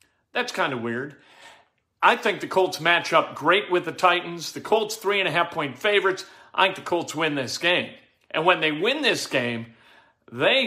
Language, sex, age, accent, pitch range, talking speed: English, male, 50-69, American, 145-180 Hz, 180 wpm